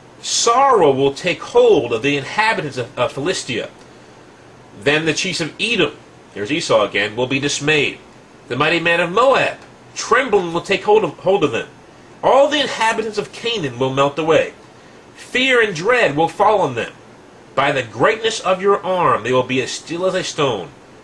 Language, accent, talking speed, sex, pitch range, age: English, American, 175 wpm, male, 140-225 Hz, 40-59